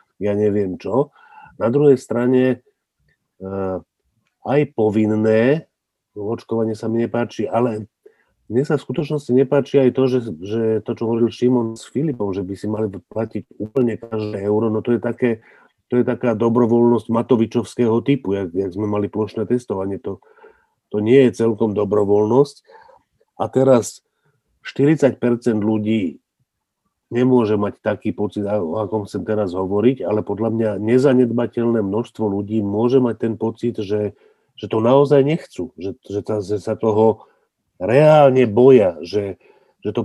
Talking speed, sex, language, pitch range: 140 wpm, male, Slovak, 105-125 Hz